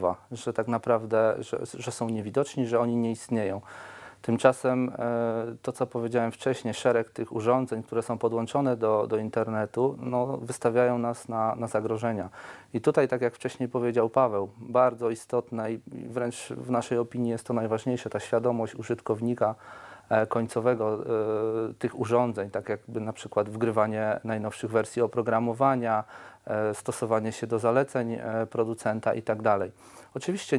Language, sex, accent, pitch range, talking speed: Polish, male, native, 110-125 Hz, 135 wpm